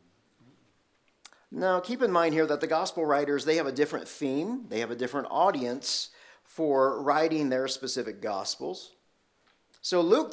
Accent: American